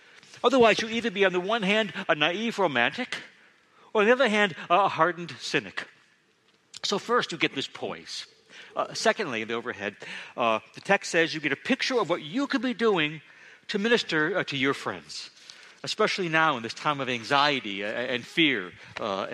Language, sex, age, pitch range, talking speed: English, male, 60-79, 135-205 Hz, 185 wpm